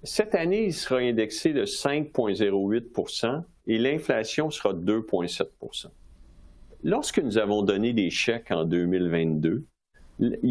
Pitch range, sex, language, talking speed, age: 100-150 Hz, male, French, 115 wpm, 50-69